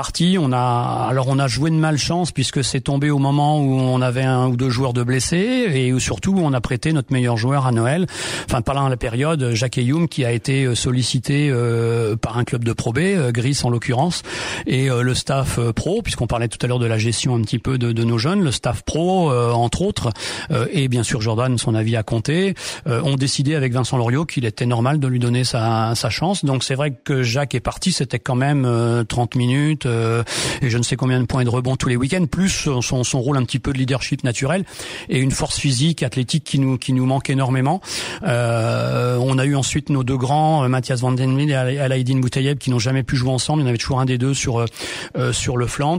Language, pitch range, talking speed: French, 125-145 Hz, 230 wpm